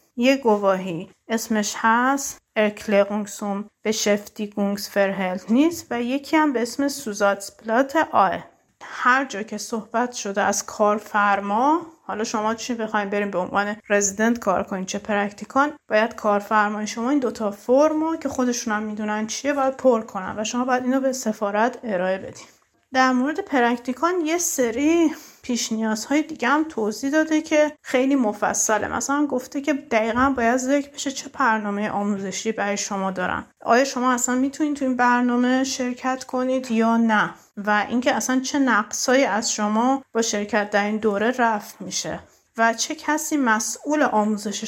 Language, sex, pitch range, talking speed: Persian, female, 205-260 Hz, 150 wpm